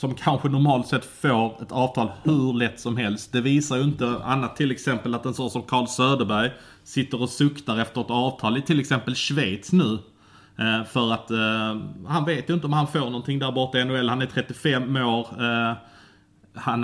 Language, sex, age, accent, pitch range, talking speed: Swedish, male, 30-49, Norwegian, 115-130 Hz, 205 wpm